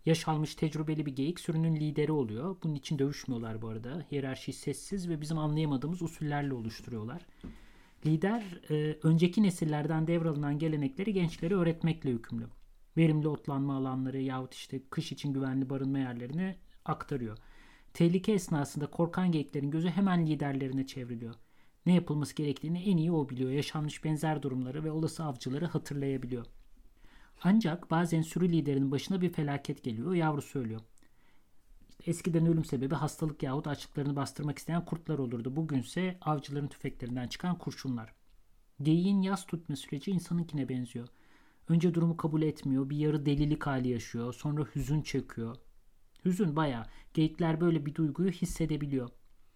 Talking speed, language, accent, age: 135 wpm, German, Turkish, 40-59